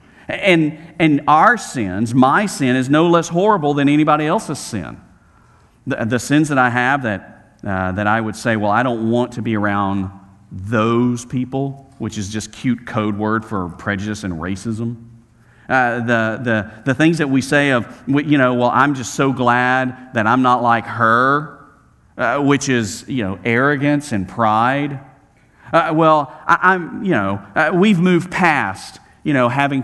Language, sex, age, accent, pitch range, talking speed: English, male, 40-59, American, 110-150 Hz, 175 wpm